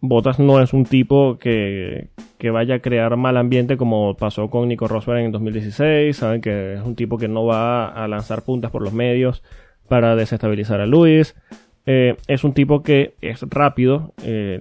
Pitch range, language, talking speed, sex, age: 115-140 Hz, Spanish, 185 wpm, male, 20-39